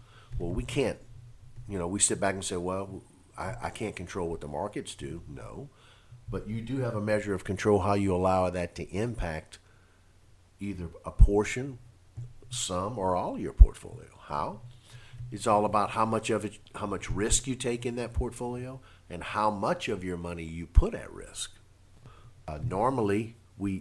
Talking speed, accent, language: 180 wpm, American, English